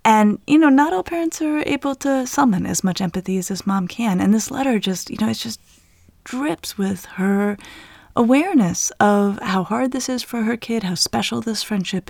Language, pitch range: English, 175-240 Hz